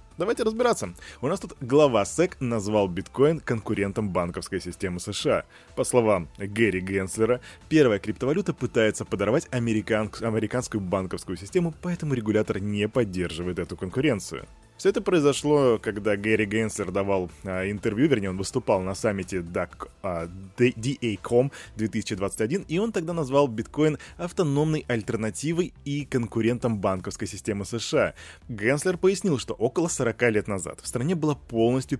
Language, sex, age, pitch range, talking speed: Russian, male, 20-39, 100-140 Hz, 135 wpm